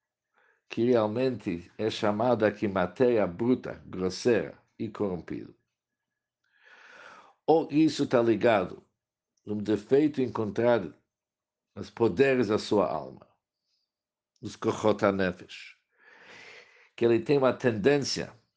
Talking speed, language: 95 wpm, English